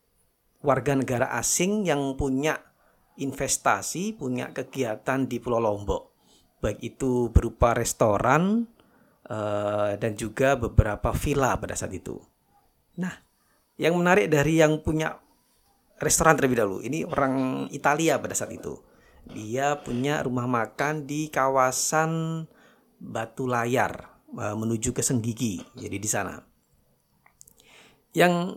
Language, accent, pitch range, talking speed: Indonesian, native, 115-155 Hz, 110 wpm